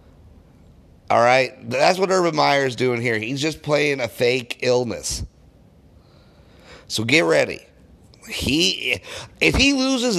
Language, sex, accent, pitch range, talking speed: English, male, American, 110-165 Hz, 130 wpm